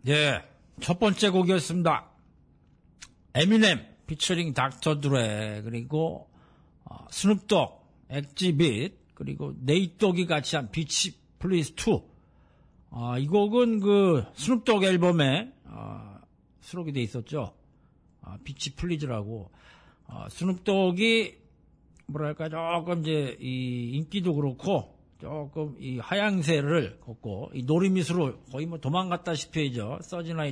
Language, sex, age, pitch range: Korean, male, 50-69, 130-175 Hz